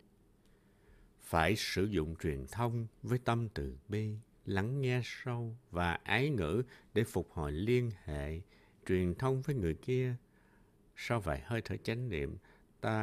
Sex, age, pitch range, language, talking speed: male, 60-79, 95-120 Hz, Vietnamese, 145 wpm